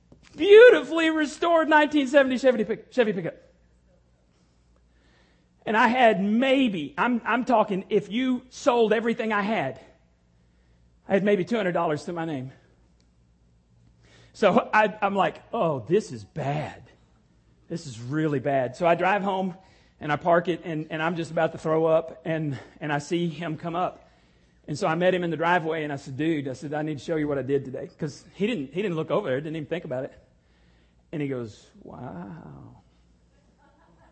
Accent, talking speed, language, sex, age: American, 180 wpm, English, male, 40-59